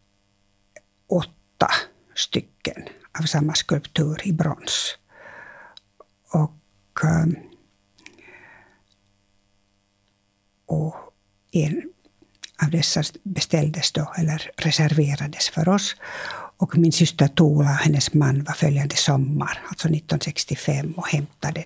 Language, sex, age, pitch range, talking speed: English, female, 60-79, 130-170 Hz, 90 wpm